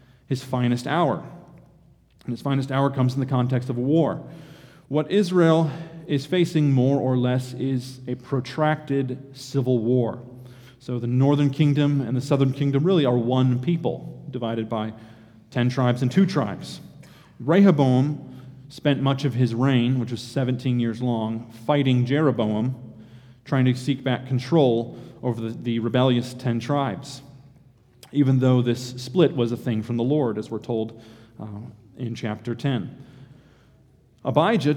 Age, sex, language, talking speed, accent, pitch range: 30-49, male, English, 150 wpm, American, 120-140 Hz